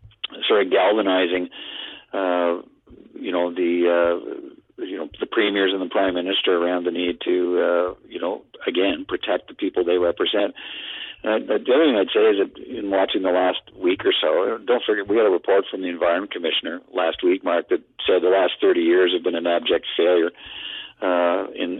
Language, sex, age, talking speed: English, male, 50-69, 195 wpm